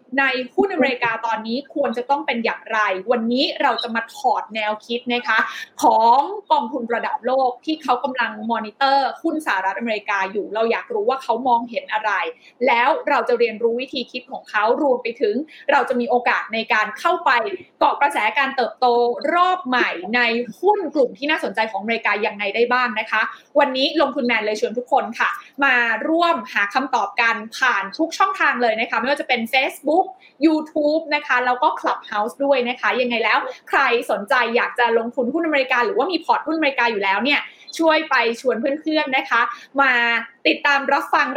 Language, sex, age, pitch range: Thai, female, 20-39, 235-300 Hz